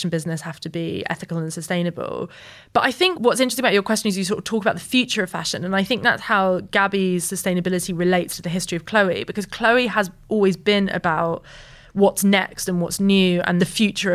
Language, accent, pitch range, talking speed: English, British, 175-210 Hz, 220 wpm